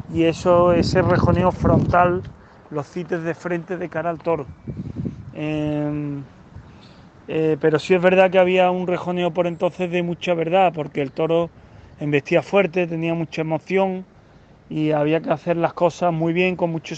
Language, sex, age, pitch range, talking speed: Spanish, male, 30-49, 160-185 Hz, 165 wpm